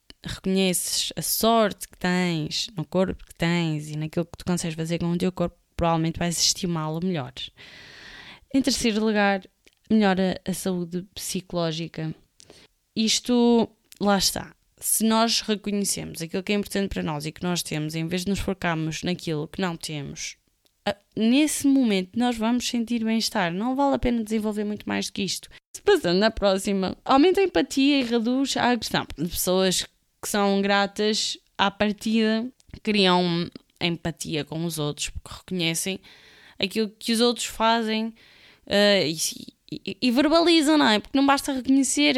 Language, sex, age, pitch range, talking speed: Portuguese, female, 20-39, 175-235 Hz, 155 wpm